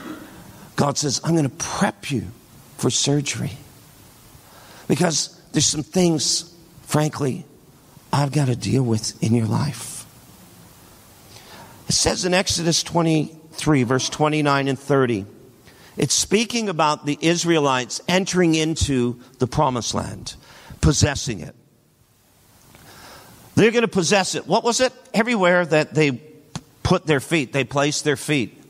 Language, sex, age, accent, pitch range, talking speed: English, male, 50-69, American, 130-180 Hz, 130 wpm